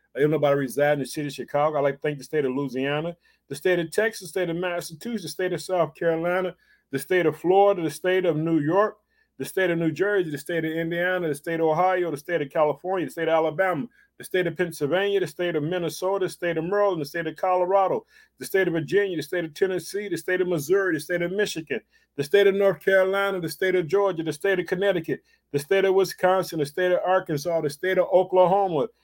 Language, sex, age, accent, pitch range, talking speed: English, male, 30-49, American, 165-195 Hz, 245 wpm